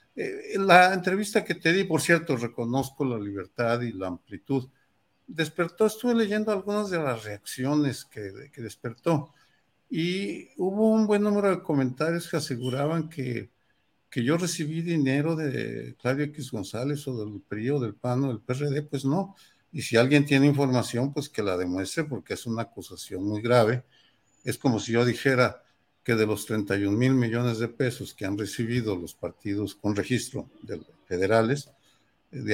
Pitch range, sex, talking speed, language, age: 105-155 Hz, male, 165 wpm, Spanish, 50-69